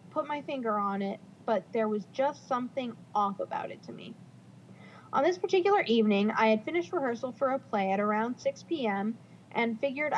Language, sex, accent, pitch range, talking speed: English, female, American, 215-270 Hz, 190 wpm